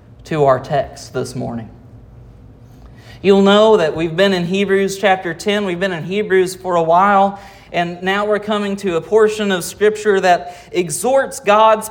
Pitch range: 125-205 Hz